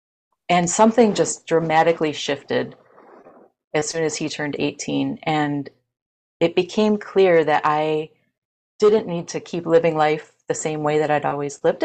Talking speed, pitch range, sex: 150 wpm, 155-175 Hz, female